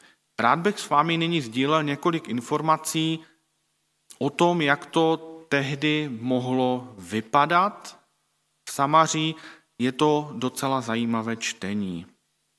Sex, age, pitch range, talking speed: male, 40-59, 130-170 Hz, 105 wpm